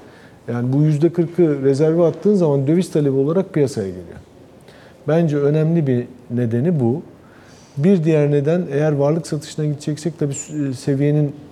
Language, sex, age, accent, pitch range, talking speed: Turkish, male, 50-69, native, 115-150 Hz, 130 wpm